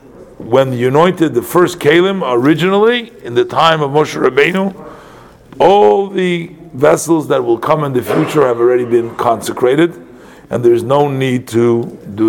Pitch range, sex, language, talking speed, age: 135-170 Hz, male, English, 160 wpm, 50-69